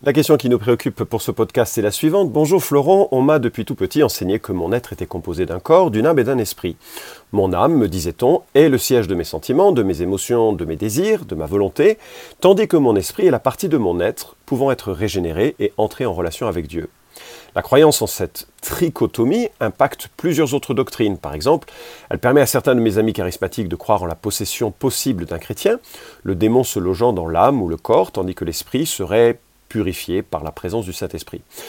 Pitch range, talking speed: 95-145 Hz, 220 wpm